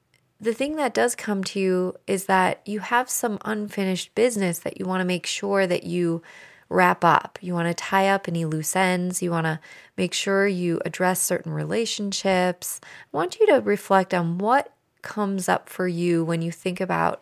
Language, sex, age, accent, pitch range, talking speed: English, female, 20-39, American, 165-200 Hz, 195 wpm